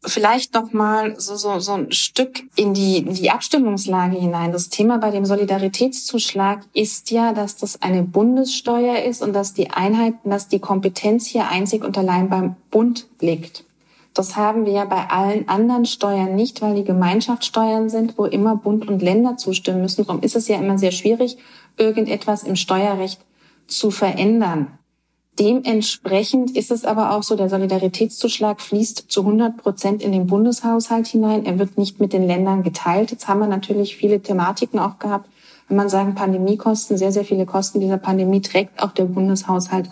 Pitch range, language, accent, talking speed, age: 190-220 Hz, German, German, 175 wpm, 30-49